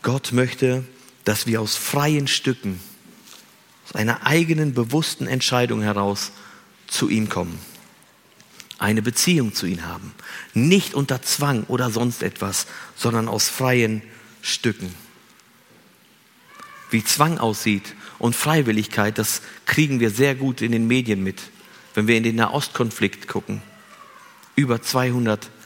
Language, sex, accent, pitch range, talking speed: German, male, German, 110-145 Hz, 125 wpm